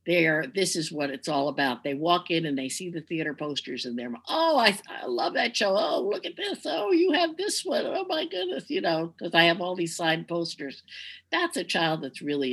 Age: 60-79